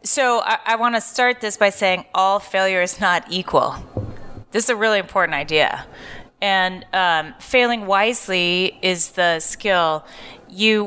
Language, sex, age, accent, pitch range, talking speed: German, female, 30-49, American, 185-230 Hz, 155 wpm